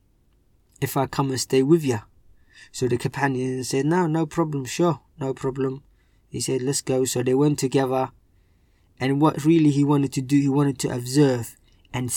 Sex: male